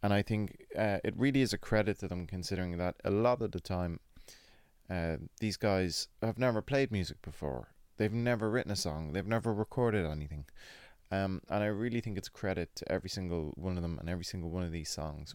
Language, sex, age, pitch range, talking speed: English, male, 20-39, 85-110 Hz, 220 wpm